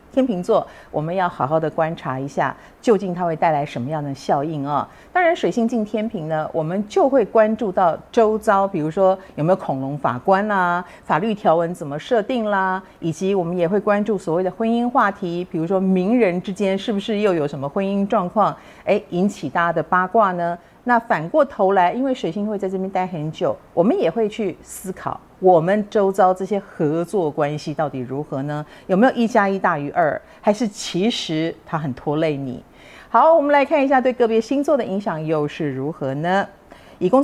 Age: 50-69